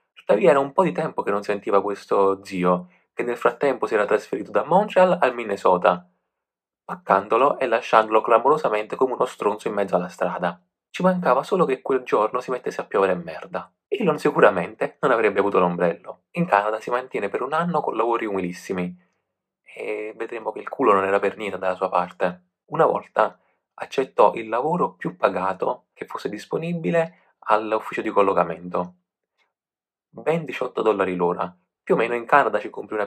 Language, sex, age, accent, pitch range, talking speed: Italian, male, 30-49, native, 90-140 Hz, 175 wpm